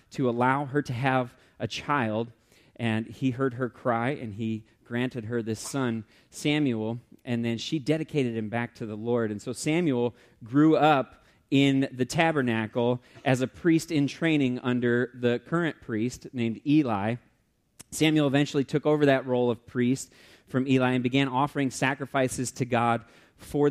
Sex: male